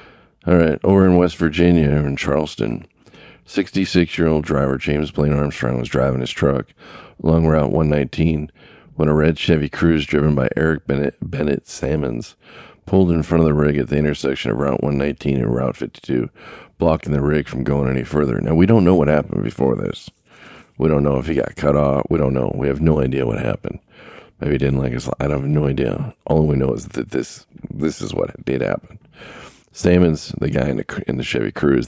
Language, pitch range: English, 70-80 Hz